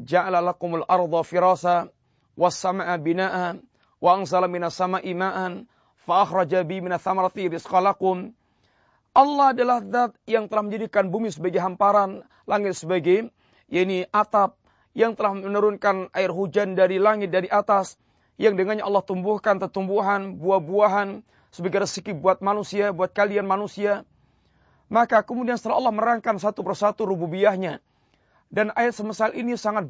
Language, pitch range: Malay, 185-225 Hz